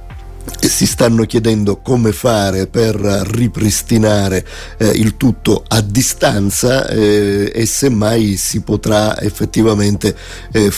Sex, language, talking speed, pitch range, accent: male, Italian, 105 wpm, 100-110 Hz, native